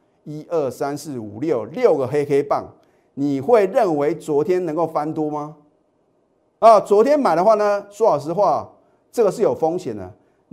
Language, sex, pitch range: Chinese, male, 130-205 Hz